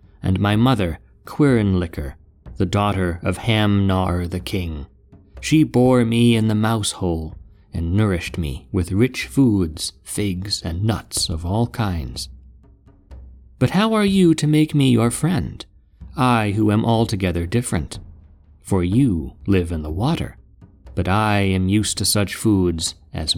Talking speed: 145 wpm